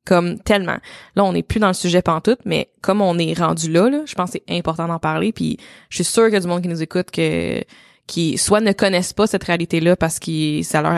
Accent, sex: Canadian, female